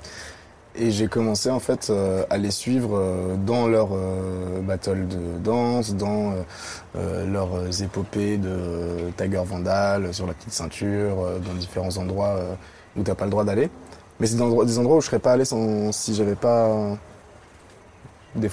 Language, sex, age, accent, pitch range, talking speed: French, male, 20-39, French, 95-110 Hz, 180 wpm